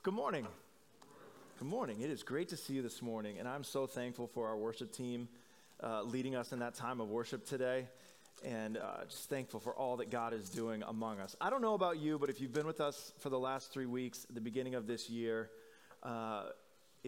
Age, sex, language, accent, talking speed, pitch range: 20-39, male, English, American, 220 wpm, 115-155 Hz